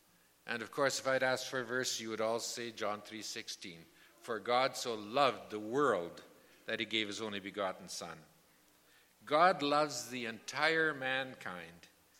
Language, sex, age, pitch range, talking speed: English, male, 50-69, 115-150 Hz, 165 wpm